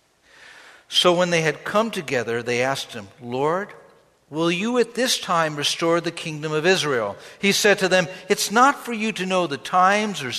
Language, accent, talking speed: English, American, 190 wpm